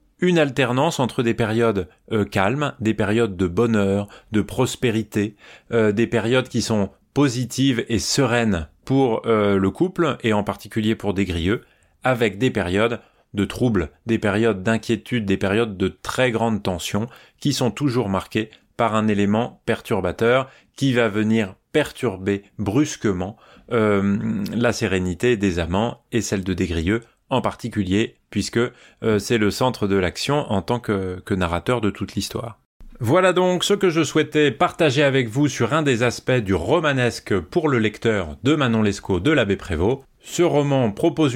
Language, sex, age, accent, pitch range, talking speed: French, male, 30-49, French, 100-135 Hz, 165 wpm